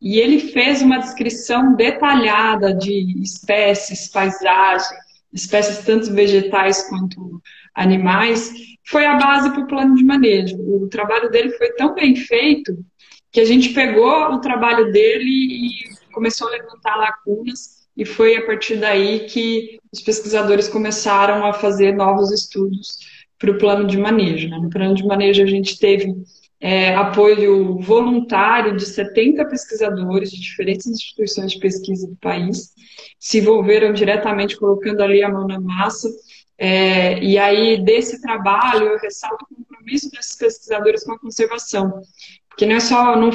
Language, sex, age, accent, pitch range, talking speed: Portuguese, female, 20-39, Brazilian, 200-235 Hz, 150 wpm